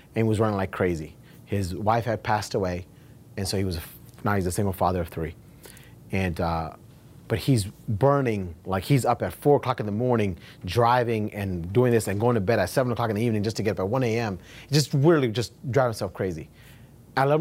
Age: 30-49